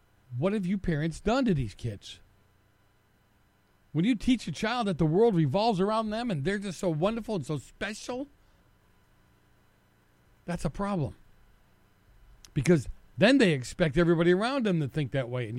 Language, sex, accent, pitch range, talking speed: English, male, American, 110-185 Hz, 160 wpm